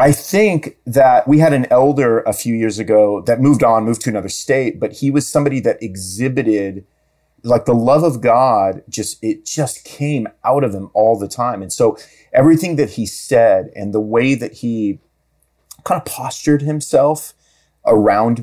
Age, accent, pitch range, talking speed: 30-49, American, 105-140 Hz, 180 wpm